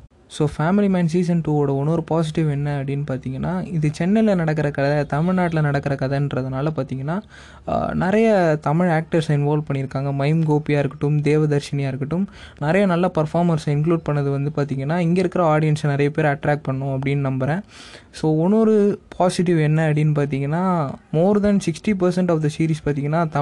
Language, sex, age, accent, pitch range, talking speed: Tamil, male, 20-39, native, 145-170 Hz, 150 wpm